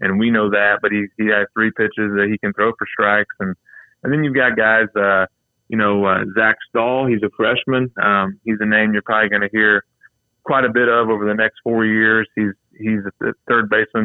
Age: 20-39